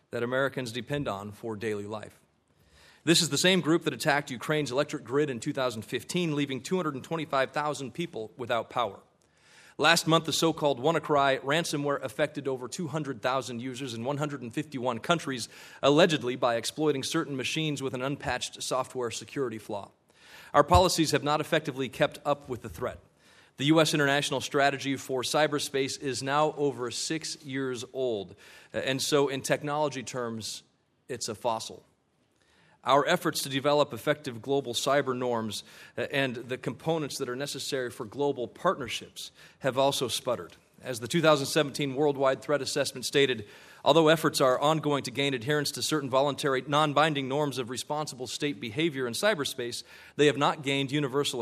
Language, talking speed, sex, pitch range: English, 150 wpm, male, 125-150 Hz